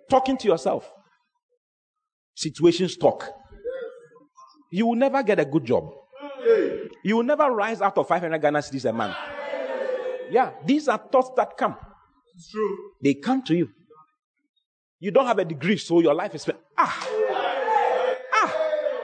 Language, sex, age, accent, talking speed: English, male, 40-59, Nigerian, 140 wpm